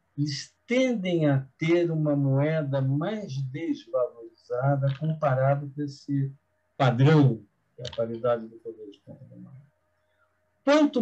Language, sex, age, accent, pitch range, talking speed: Portuguese, male, 50-69, Brazilian, 125-155 Hz, 115 wpm